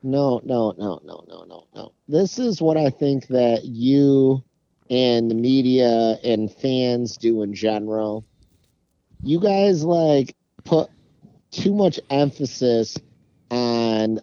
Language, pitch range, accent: English, 115-165 Hz, American